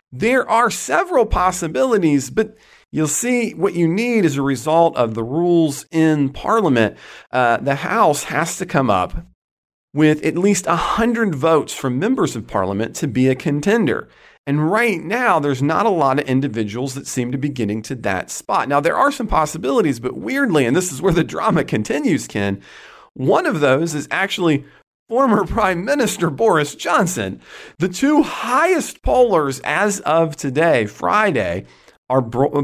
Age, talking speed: 40-59, 165 wpm